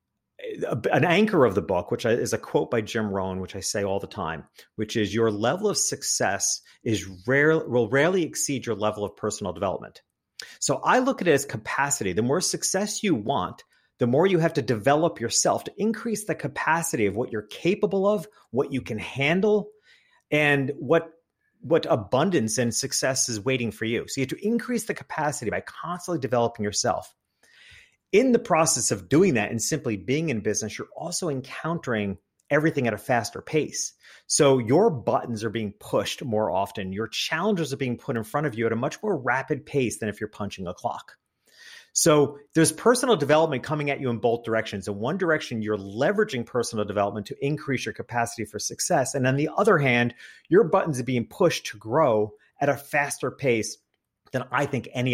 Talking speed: 195 wpm